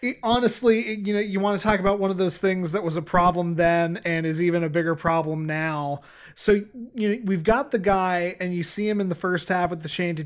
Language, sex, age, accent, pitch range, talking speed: English, male, 20-39, American, 160-180 Hz, 245 wpm